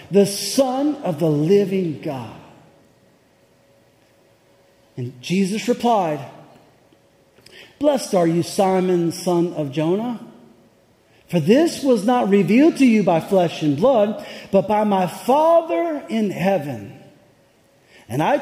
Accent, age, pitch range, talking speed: American, 40-59, 195-265 Hz, 115 wpm